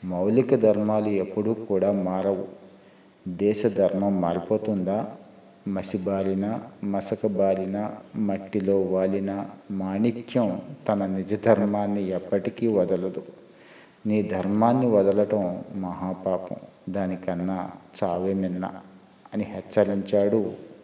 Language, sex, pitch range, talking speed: Telugu, male, 95-105 Hz, 75 wpm